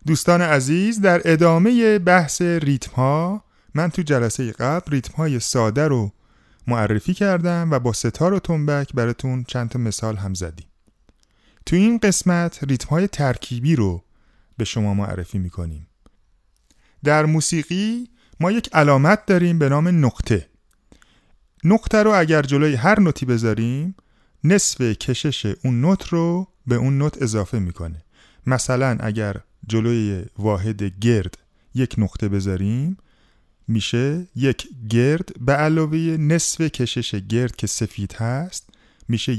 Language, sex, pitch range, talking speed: Persian, male, 110-160 Hz, 130 wpm